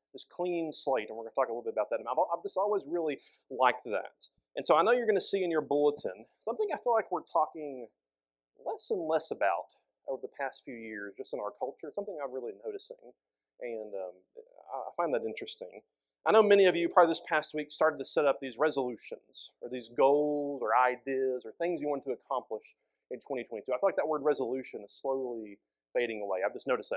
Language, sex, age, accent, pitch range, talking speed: English, male, 30-49, American, 135-185 Hz, 225 wpm